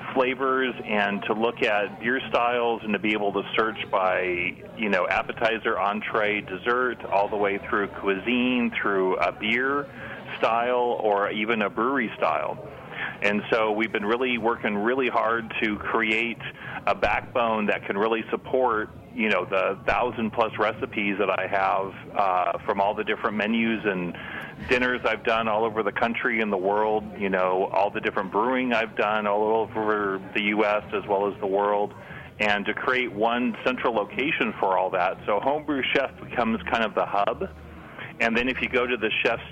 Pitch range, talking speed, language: 105-120 Hz, 175 wpm, English